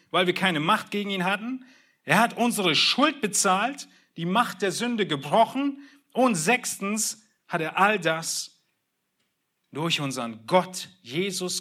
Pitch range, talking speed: 145-210 Hz, 140 wpm